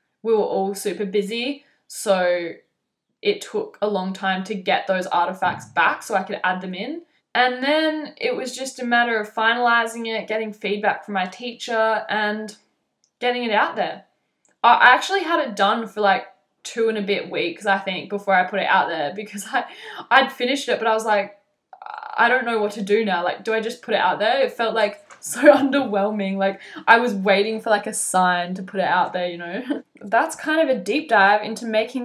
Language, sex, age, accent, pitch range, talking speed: English, female, 10-29, Australian, 190-235 Hz, 215 wpm